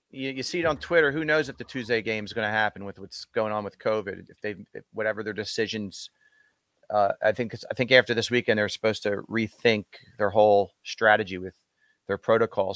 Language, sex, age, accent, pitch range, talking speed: English, male, 40-59, American, 105-130 Hz, 210 wpm